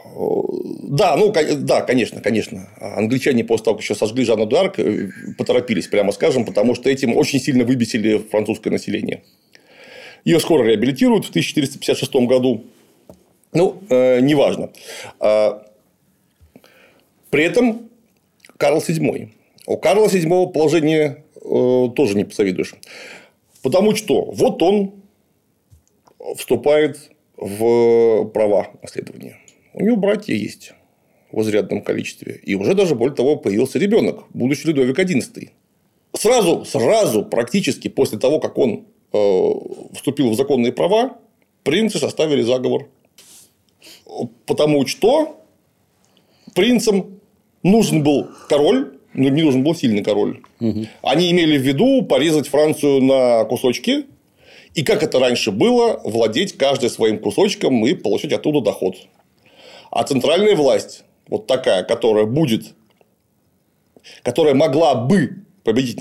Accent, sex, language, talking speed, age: native, male, Russian, 115 wpm, 40-59